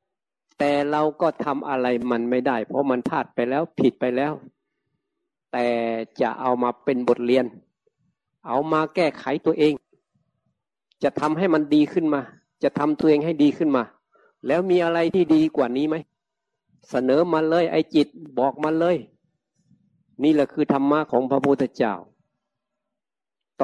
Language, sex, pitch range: Thai, male, 135-170 Hz